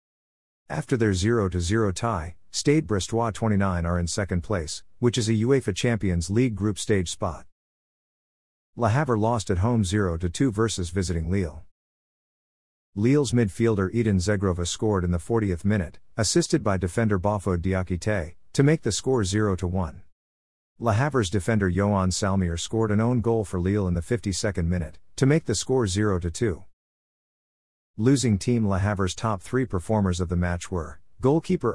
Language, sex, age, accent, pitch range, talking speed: English, male, 50-69, American, 90-115 Hz, 150 wpm